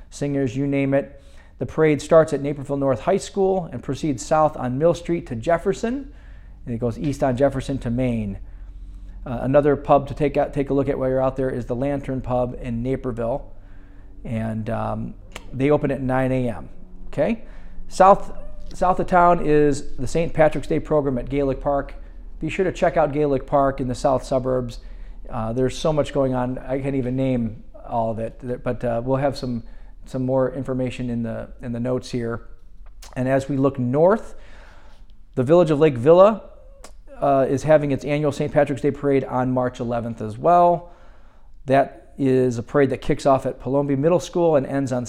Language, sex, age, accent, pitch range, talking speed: English, male, 40-59, American, 120-145 Hz, 190 wpm